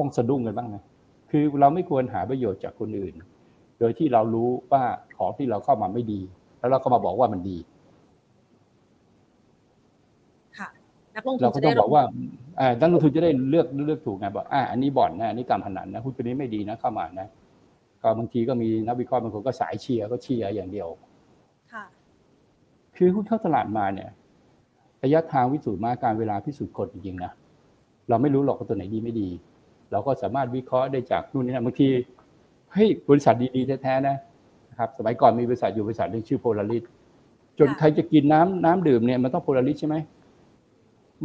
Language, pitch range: Thai, 115-155 Hz